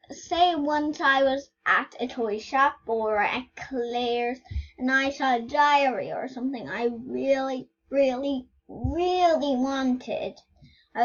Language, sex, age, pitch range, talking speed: English, female, 10-29, 250-350 Hz, 130 wpm